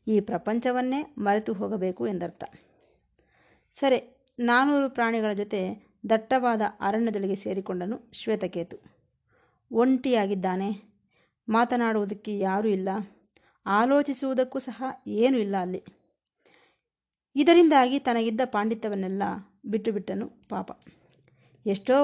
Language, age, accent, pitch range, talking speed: Kannada, 20-39, native, 195-250 Hz, 75 wpm